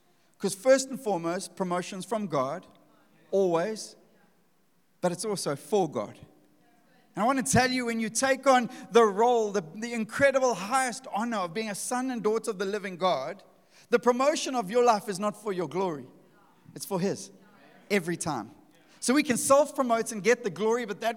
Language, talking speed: English, 185 wpm